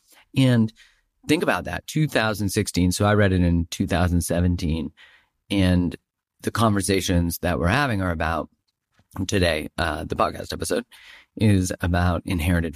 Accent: American